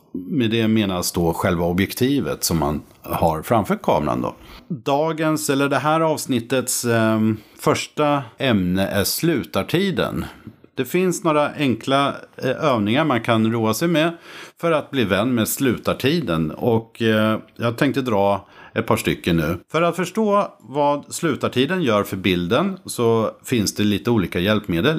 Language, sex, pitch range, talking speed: Swedish, male, 105-145 Hz, 145 wpm